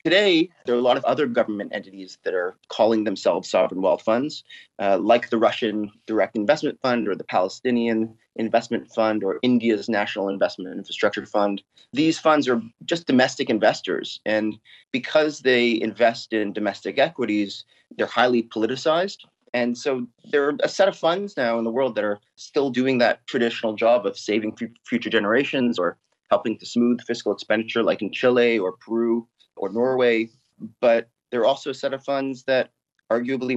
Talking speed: 170 wpm